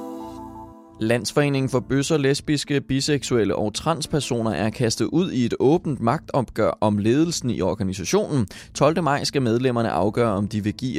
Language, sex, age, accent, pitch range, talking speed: English, male, 20-39, Danish, 105-140 Hz, 145 wpm